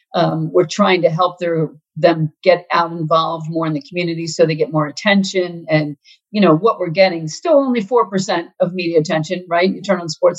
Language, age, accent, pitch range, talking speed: English, 50-69, American, 160-210 Hz, 210 wpm